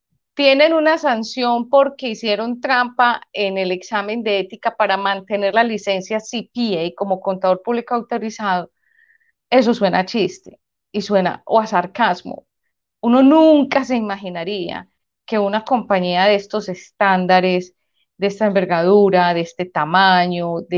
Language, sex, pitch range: Spanish, female, 185-230 Hz